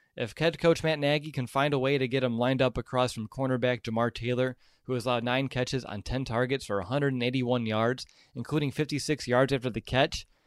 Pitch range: 120-145 Hz